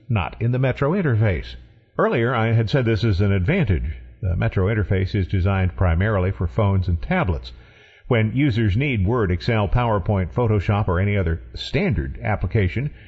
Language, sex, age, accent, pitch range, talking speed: English, male, 50-69, American, 95-125 Hz, 160 wpm